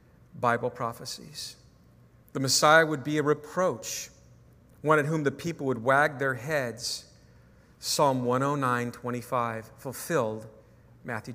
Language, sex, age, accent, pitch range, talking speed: English, male, 40-59, American, 115-145 Hz, 115 wpm